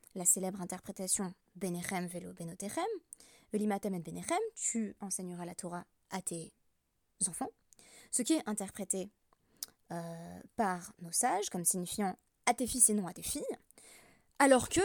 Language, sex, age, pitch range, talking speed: French, female, 20-39, 185-260 Hz, 155 wpm